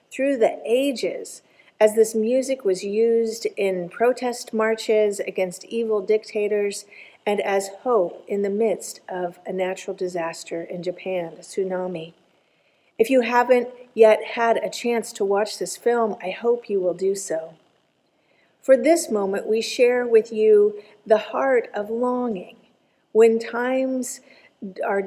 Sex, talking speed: female, 140 wpm